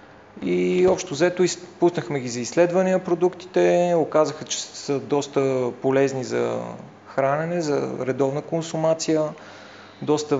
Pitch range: 130-155 Hz